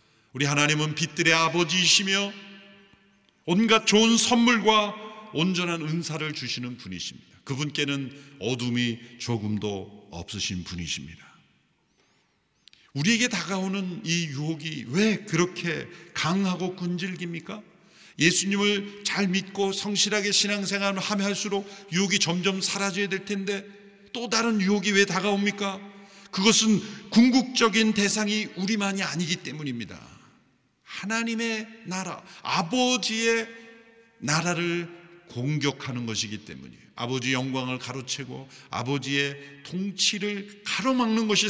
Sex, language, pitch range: male, Korean, 140-210 Hz